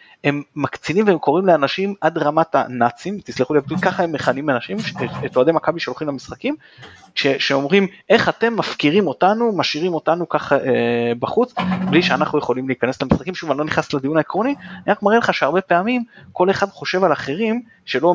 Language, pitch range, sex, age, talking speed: Hebrew, 130-190 Hz, male, 30-49, 180 wpm